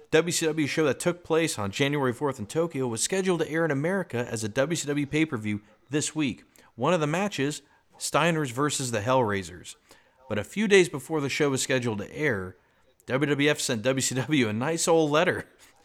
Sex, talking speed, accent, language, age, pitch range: male, 180 wpm, American, English, 40-59, 110-150 Hz